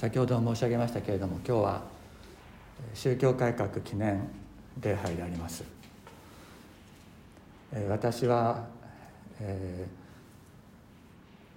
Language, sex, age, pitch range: Japanese, male, 60-79, 95-120 Hz